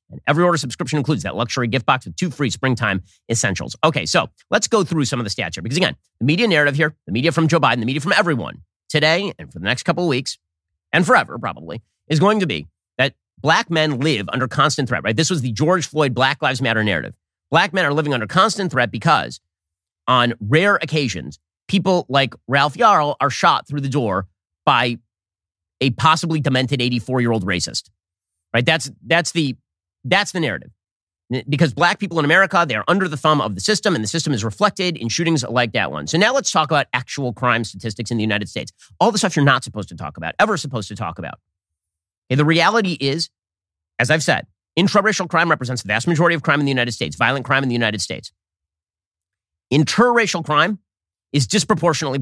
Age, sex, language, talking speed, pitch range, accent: 30-49, male, English, 210 wpm, 95-160 Hz, American